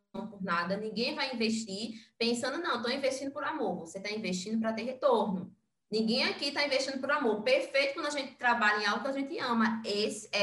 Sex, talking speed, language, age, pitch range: female, 200 wpm, Portuguese, 20-39, 210-265 Hz